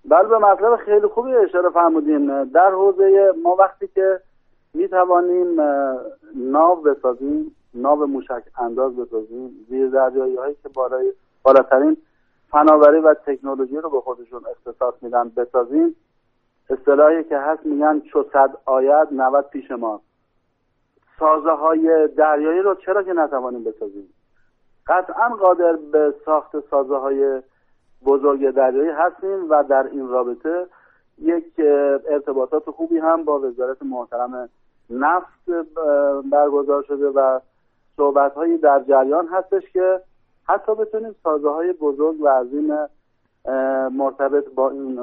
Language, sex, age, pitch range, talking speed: Persian, male, 50-69, 135-175 Hz, 120 wpm